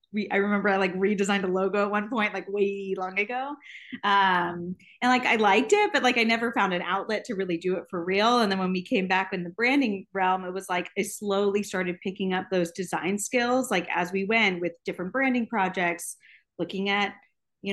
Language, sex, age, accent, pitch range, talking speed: English, female, 30-49, American, 180-220 Hz, 220 wpm